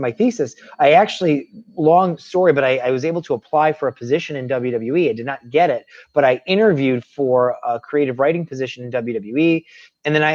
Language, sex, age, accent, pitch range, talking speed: English, male, 30-49, American, 130-160 Hz, 210 wpm